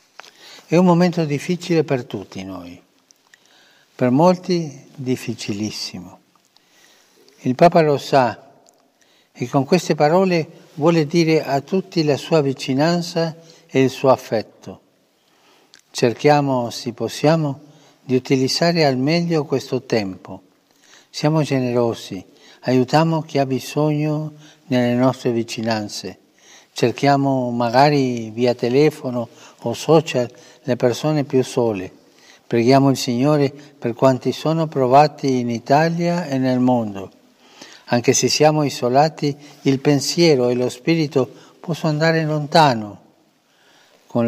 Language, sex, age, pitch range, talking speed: Italian, male, 60-79, 120-150 Hz, 110 wpm